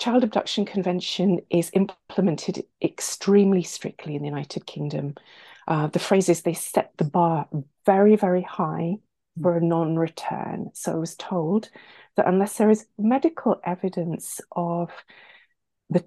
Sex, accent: female, British